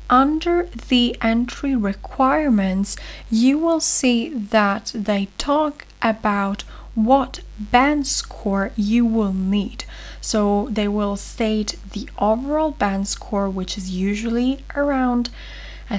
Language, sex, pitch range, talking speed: English, female, 195-245 Hz, 115 wpm